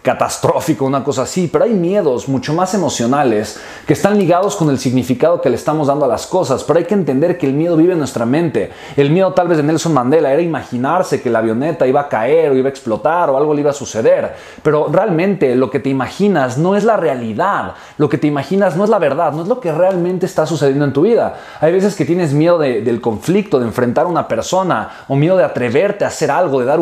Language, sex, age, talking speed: Spanish, male, 30-49, 245 wpm